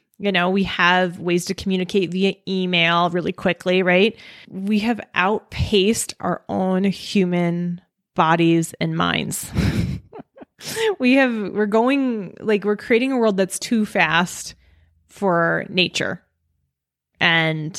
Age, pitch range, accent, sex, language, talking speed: 20-39, 175-210 Hz, American, female, English, 120 wpm